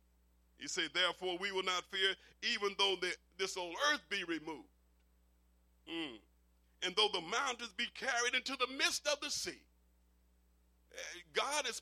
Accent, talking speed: American, 150 wpm